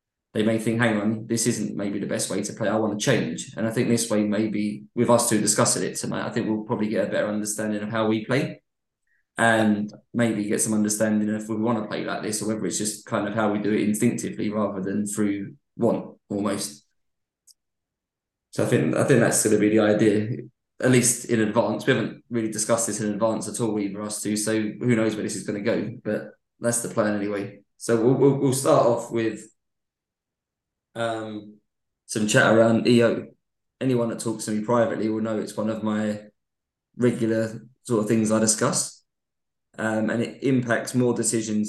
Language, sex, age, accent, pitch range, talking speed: English, male, 20-39, British, 105-115 Hz, 210 wpm